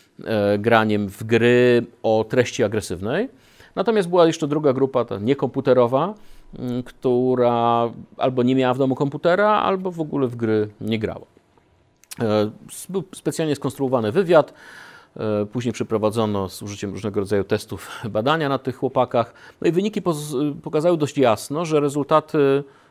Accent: native